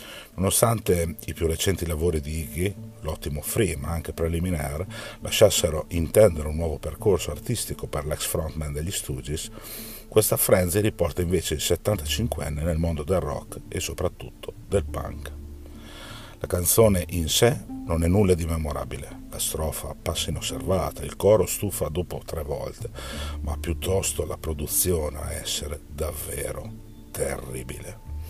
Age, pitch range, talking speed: 50-69, 75-100 Hz, 135 wpm